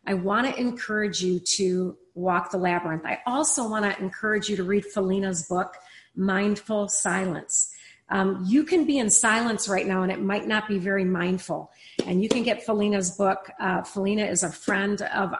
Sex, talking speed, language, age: female, 185 wpm, English, 40-59